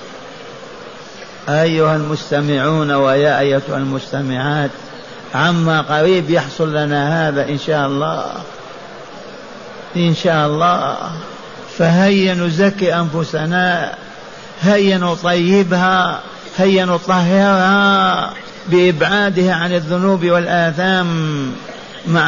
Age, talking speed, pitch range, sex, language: 50-69, 75 wpm, 150-190 Hz, male, Arabic